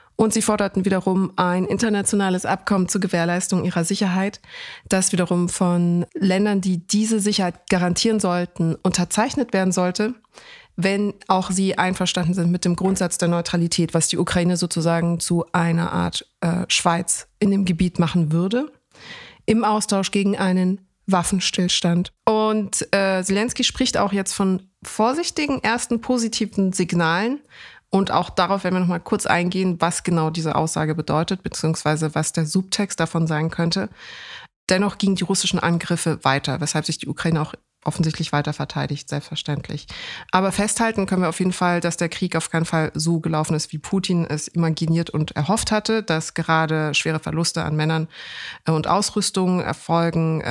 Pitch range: 165-195 Hz